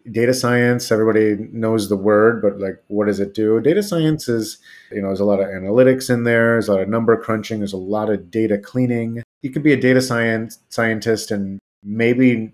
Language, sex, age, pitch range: Thai, male, 30-49, 105-120 Hz